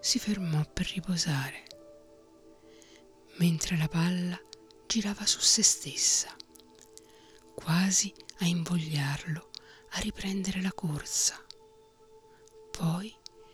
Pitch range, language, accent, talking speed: 155-260 Hz, Italian, native, 85 wpm